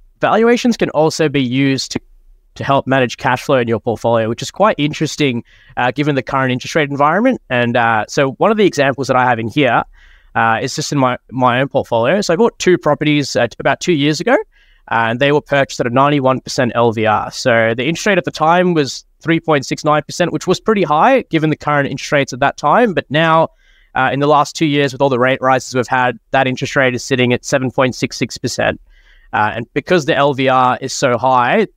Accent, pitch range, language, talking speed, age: Australian, 125-150 Hz, English, 215 wpm, 20-39